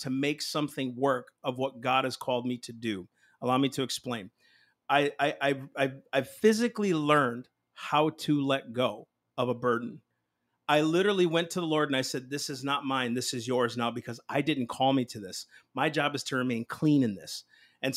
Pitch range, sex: 130-160 Hz, male